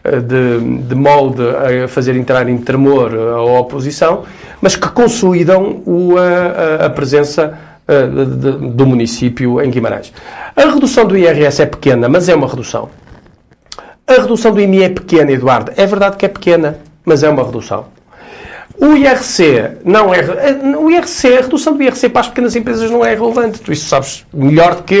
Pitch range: 135-185 Hz